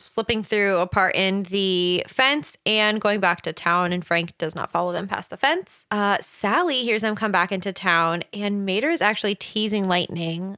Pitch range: 180-230 Hz